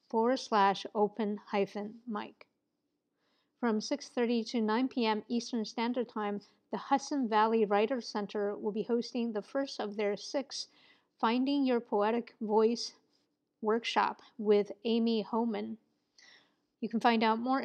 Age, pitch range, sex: 50-69, 205-235 Hz, female